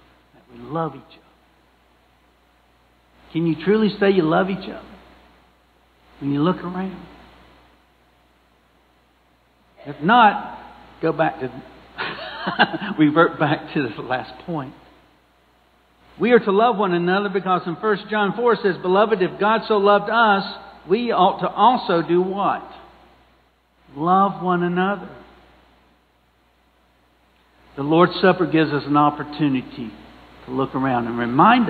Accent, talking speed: American, 125 wpm